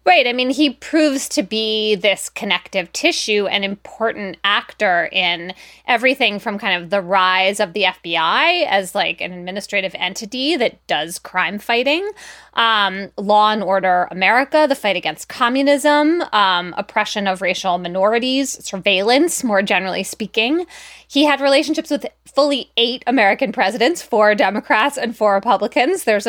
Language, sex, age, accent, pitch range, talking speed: English, female, 20-39, American, 195-270 Hz, 145 wpm